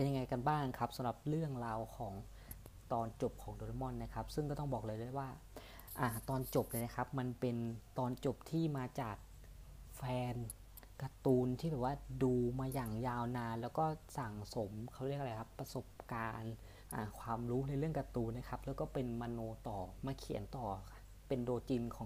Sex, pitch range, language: female, 110-135 Hz, Thai